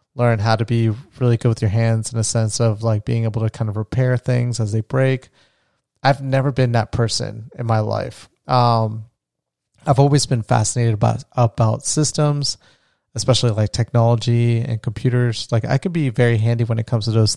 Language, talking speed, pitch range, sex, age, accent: English, 195 wpm, 115-130 Hz, male, 30-49, American